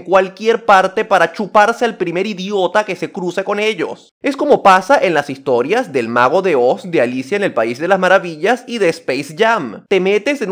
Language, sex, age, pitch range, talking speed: Spanish, male, 30-49, 175-265 Hz, 210 wpm